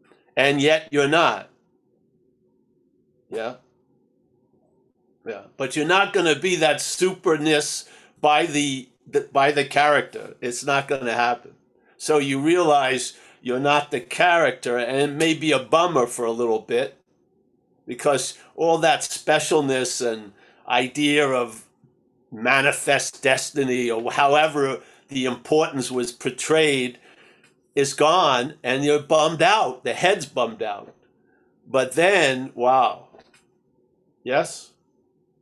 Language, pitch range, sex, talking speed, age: English, 130-160 Hz, male, 115 wpm, 50-69